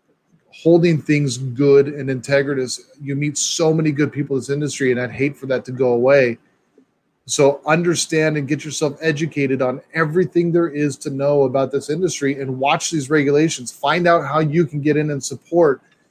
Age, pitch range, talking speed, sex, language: 30-49, 130-155 Hz, 185 wpm, male, English